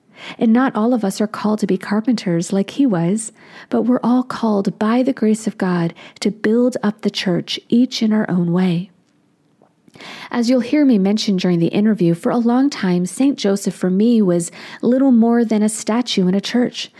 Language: English